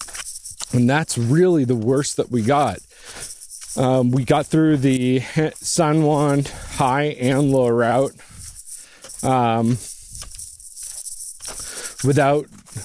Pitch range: 120-145 Hz